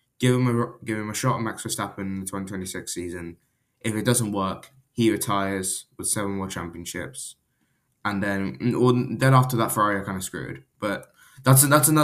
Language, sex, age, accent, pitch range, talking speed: English, male, 10-29, British, 100-125 Hz, 200 wpm